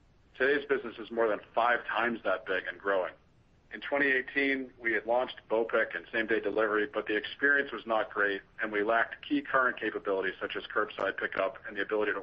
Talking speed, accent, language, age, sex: 195 wpm, American, English, 50-69, male